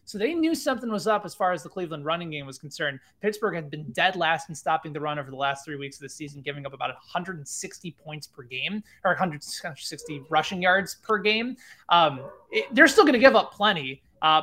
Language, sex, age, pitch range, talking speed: English, male, 20-39, 150-195 Hz, 225 wpm